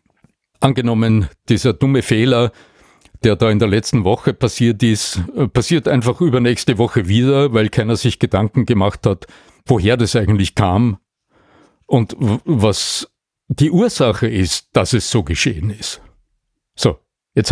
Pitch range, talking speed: 105-135 Hz, 135 wpm